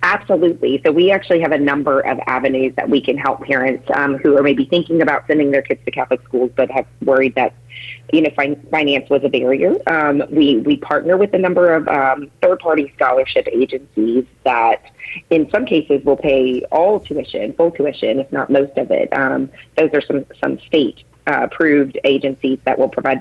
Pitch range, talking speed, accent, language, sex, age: 135-165 Hz, 195 wpm, American, English, female, 30-49